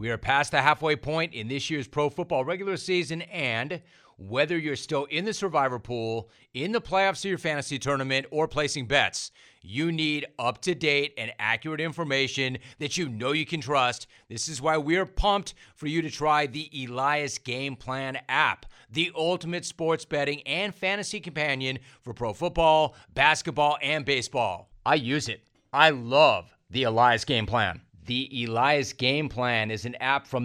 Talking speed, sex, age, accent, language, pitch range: 175 wpm, male, 40-59, American, English, 130-160 Hz